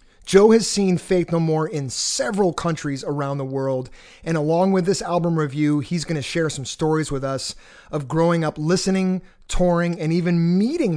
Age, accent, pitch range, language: 30-49, American, 150-180 Hz, English